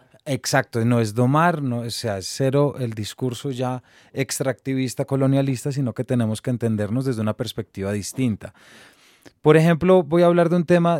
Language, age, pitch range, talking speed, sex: Spanish, 30-49, 125-155 Hz, 170 wpm, male